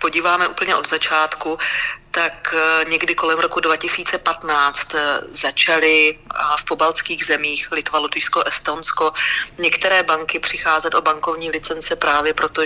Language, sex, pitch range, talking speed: Slovak, female, 150-160 Hz, 120 wpm